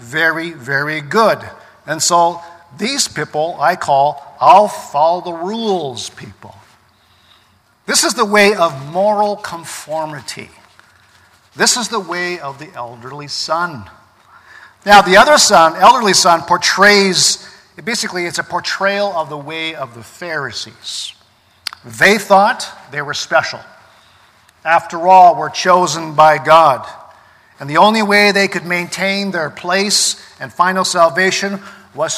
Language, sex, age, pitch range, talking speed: English, male, 50-69, 135-190 Hz, 130 wpm